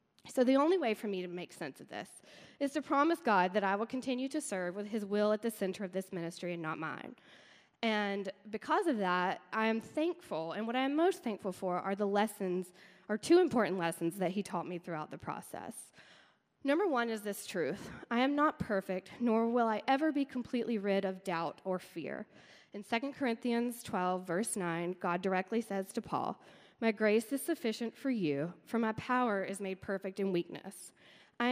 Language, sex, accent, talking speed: English, female, American, 205 wpm